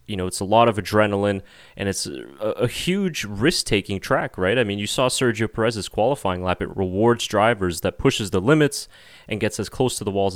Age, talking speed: 30-49, 220 wpm